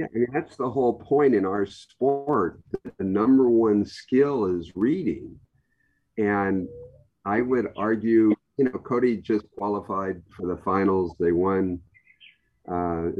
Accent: American